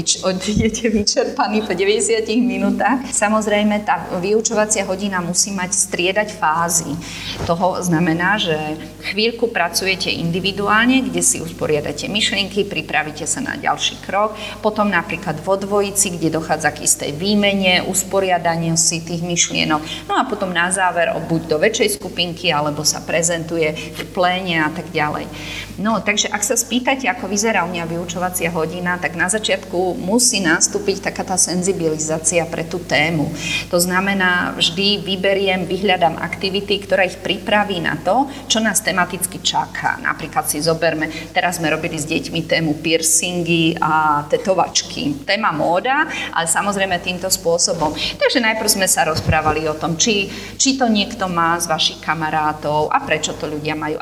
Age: 30-49